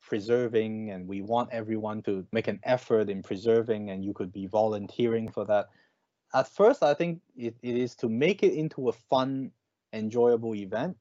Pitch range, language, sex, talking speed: 105-130 Hz, English, male, 180 wpm